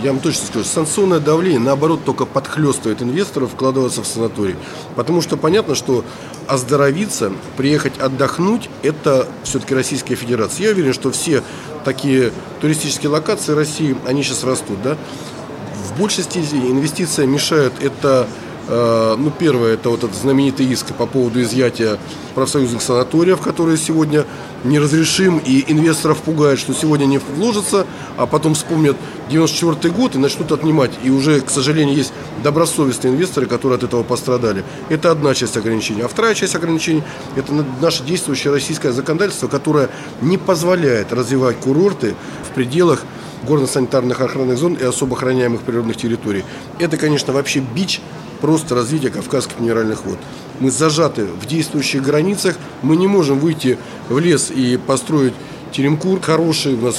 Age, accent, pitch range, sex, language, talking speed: 20-39, native, 125-155 Hz, male, Russian, 145 wpm